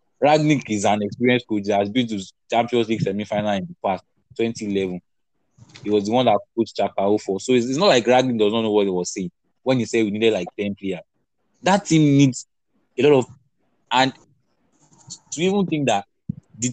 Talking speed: 210 wpm